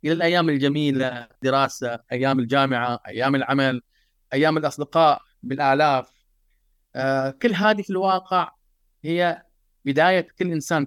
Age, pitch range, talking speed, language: 30-49, 140-170 Hz, 110 wpm, Arabic